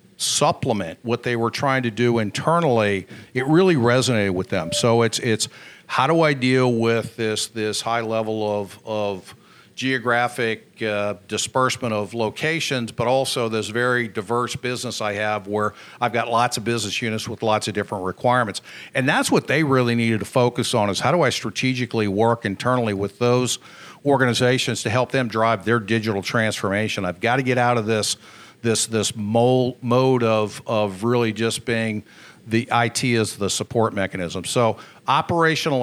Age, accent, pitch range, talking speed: 50-69, American, 110-130 Hz, 170 wpm